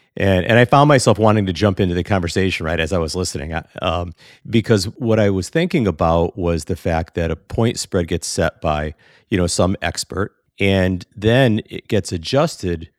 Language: English